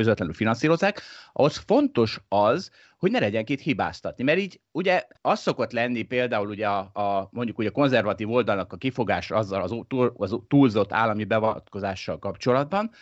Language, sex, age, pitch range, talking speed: Hungarian, male, 30-49, 105-130 Hz, 155 wpm